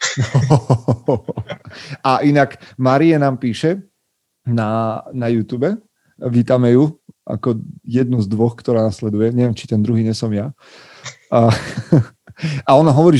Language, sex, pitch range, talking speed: Slovak, male, 110-130 Hz, 120 wpm